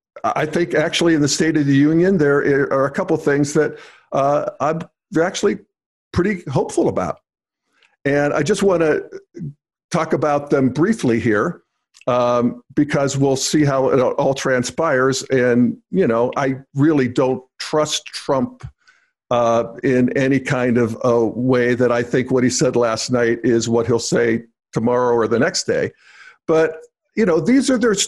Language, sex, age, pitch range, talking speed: English, male, 50-69, 125-160 Hz, 165 wpm